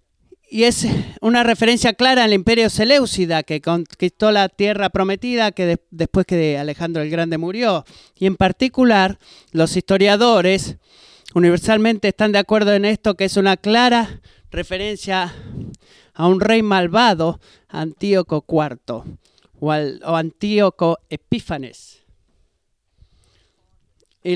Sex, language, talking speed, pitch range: male, Spanish, 115 wpm, 175-215 Hz